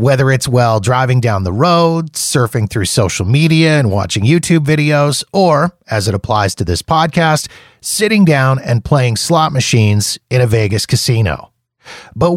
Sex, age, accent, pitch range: male, 30-49, American, 115-155 Hz